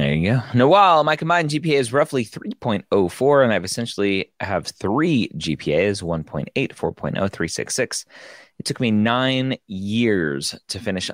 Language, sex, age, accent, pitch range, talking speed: English, male, 30-49, American, 85-115 Hz, 140 wpm